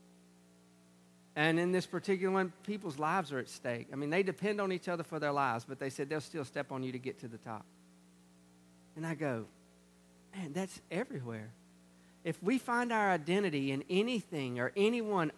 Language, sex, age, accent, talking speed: English, male, 50-69, American, 185 wpm